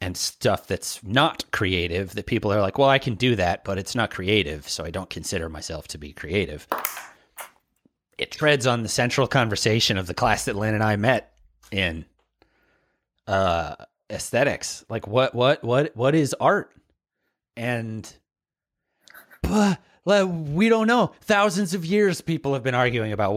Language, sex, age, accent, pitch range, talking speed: English, male, 30-49, American, 105-145 Hz, 160 wpm